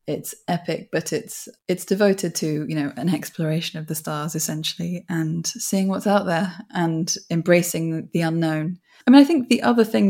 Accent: British